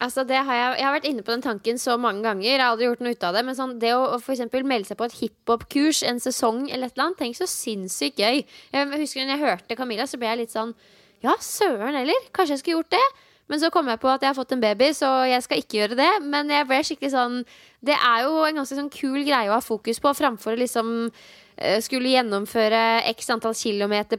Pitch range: 220-270 Hz